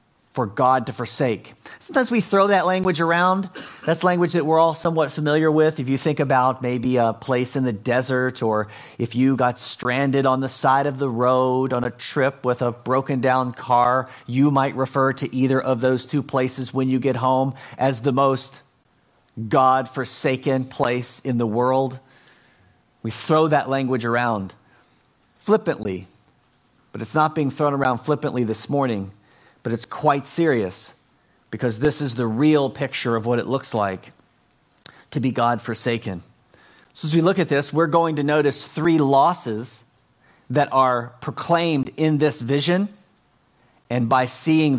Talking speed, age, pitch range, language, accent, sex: 165 wpm, 40-59, 120-145 Hz, English, American, male